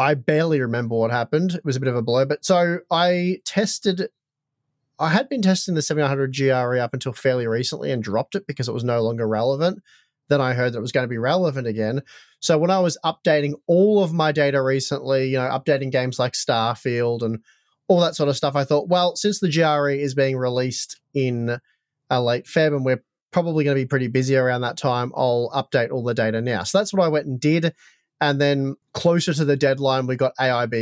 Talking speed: 225 wpm